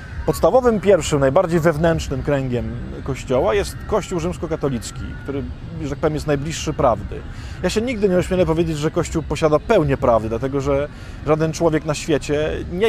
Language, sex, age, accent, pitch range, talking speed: Polish, male, 20-39, native, 135-175 Hz, 160 wpm